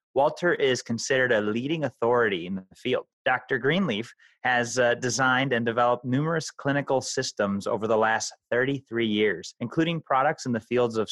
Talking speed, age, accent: 160 wpm, 30-49, American